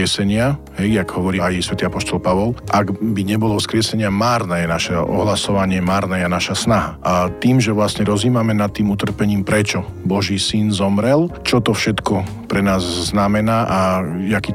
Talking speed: 155 wpm